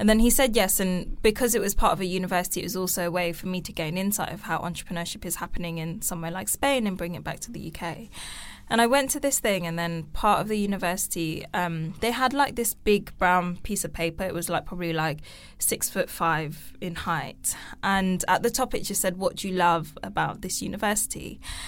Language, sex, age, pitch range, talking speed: English, female, 10-29, 180-230 Hz, 235 wpm